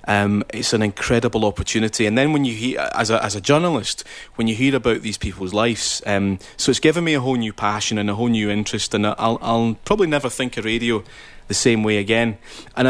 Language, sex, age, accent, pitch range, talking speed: English, male, 30-49, British, 105-120 Hz, 240 wpm